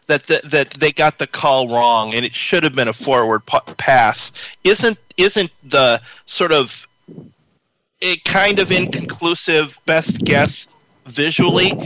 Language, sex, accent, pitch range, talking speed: English, male, American, 150-210 Hz, 145 wpm